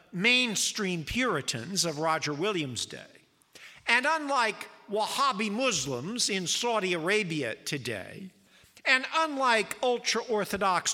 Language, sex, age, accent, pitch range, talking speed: English, male, 50-69, American, 170-240 Hz, 95 wpm